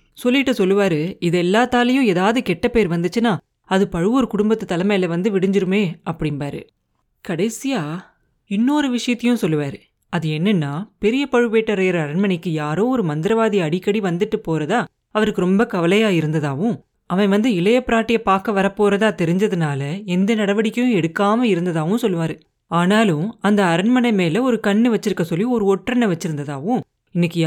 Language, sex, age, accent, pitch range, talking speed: Tamil, female, 30-49, native, 175-225 Hz, 85 wpm